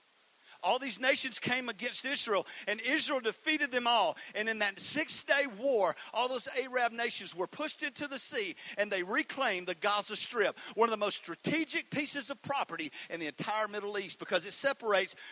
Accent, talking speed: American, 185 wpm